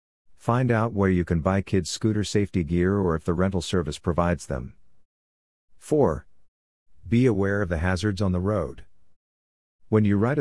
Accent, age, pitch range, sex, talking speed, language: American, 50-69, 85-105 Hz, male, 165 wpm, English